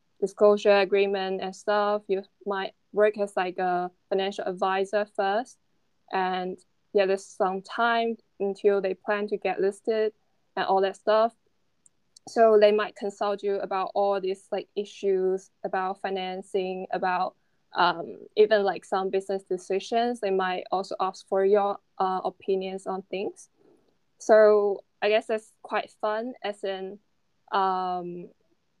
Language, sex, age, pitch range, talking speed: English, female, 10-29, 190-210 Hz, 140 wpm